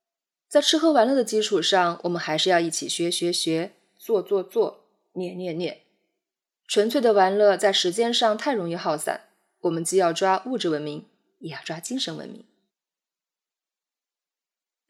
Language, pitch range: Chinese, 180-275 Hz